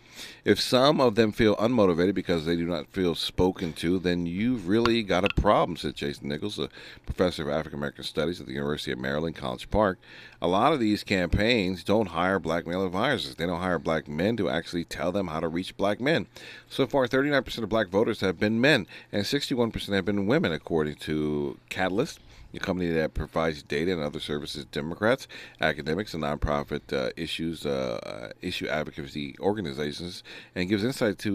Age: 40-59